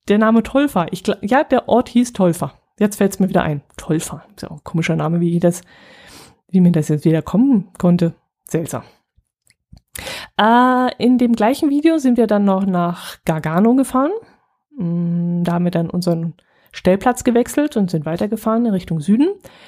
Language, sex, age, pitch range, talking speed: German, female, 20-39, 180-225 Hz, 150 wpm